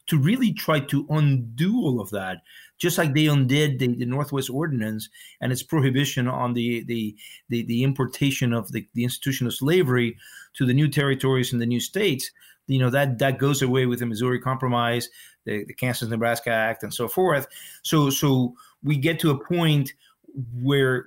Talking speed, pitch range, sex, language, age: 180 wpm, 120-140 Hz, male, English, 40-59